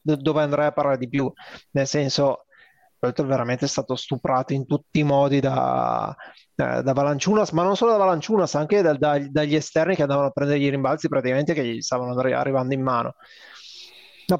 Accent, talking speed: native, 190 wpm